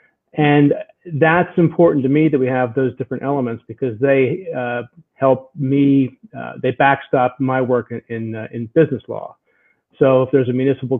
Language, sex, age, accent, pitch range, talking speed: English, male, 40-59, American, 120-140 Hz, 175 wpm